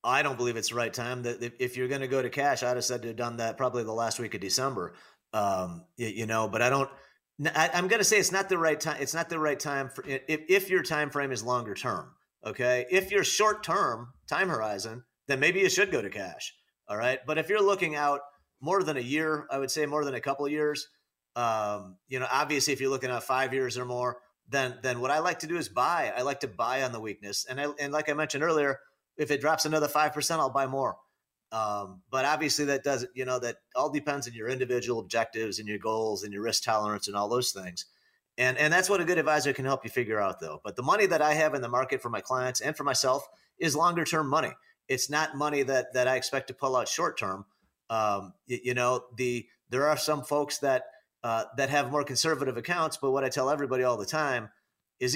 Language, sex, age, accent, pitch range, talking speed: English, male, 30-49, American, 120-150 Hz, 245 wpm